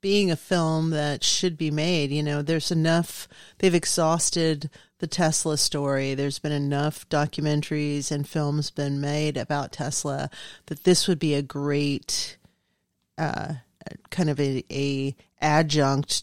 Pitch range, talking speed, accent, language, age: 140-160 Hz, 140 wpm, American, English, 40-59